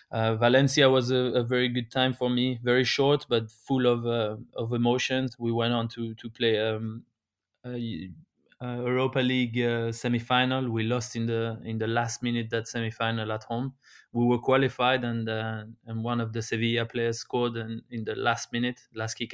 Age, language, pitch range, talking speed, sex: 20-39, English, 115-125 Hz, 190 wpm, male